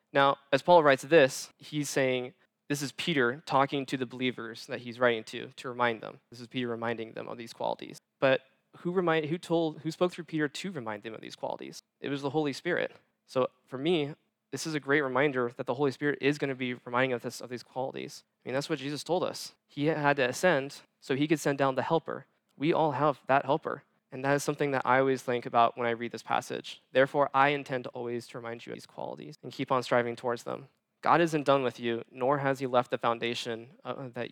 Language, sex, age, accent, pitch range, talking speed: English, male, 20-39, American, 125-145 Hz, 240 wpm